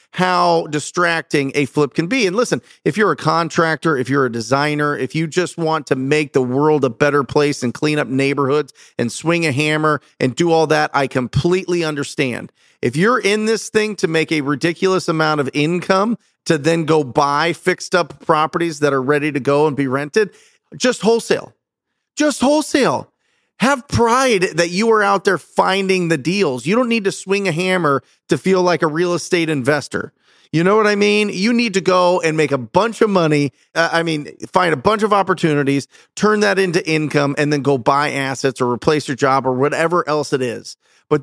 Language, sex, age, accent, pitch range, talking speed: English, male, 40-59, American, 145-190 Hz, 200 wpm